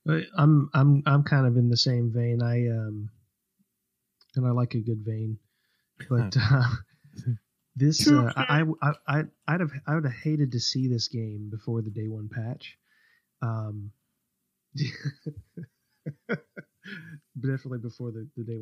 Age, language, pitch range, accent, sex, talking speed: 30-49, English, 115-135 Hz, American, male, 140 wpm